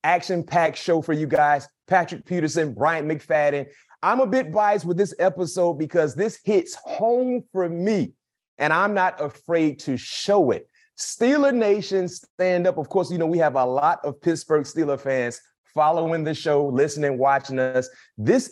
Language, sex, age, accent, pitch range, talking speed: English, male, 30-49, American, 145-200 Hz, 170 wpm